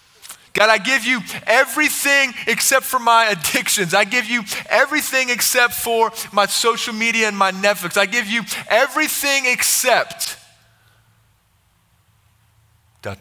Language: English